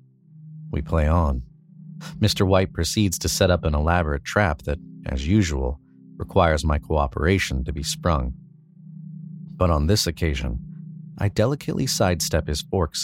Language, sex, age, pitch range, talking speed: English, male, 40-59, 75-105 Hz, 140 wpm